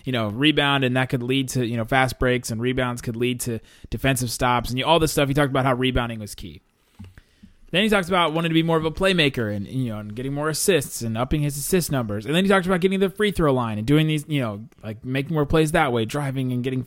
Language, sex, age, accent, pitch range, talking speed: English, male, 20-39, American, 115-145 Hz, 275 wpm